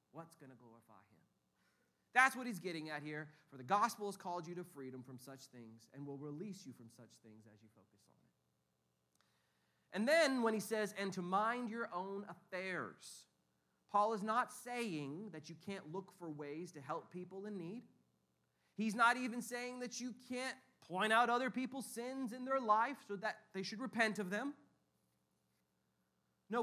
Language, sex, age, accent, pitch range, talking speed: English, male, 30-49, American, 140-220 Hz, 185 wpm